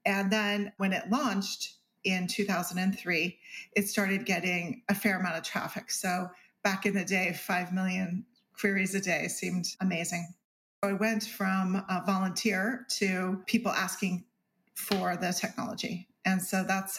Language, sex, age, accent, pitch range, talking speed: English, female, 40-59, American, 185-205 Hz, 145 wpm